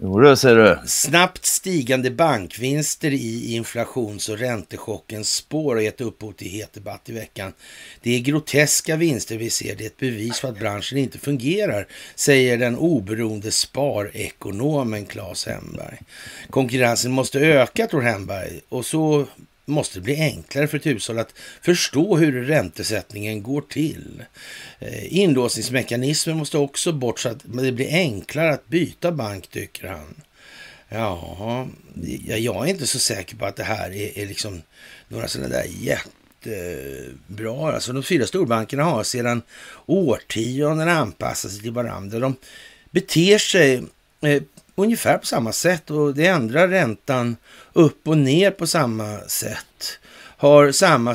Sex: male